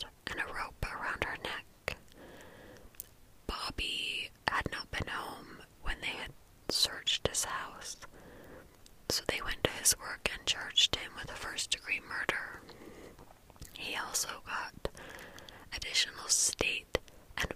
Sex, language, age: female, English, 20-39